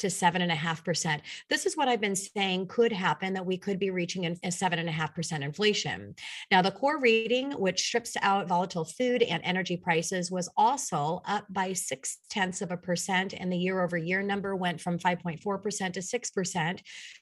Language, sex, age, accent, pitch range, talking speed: English, female, 30-49, American, 180-215 Hz, 200 wpm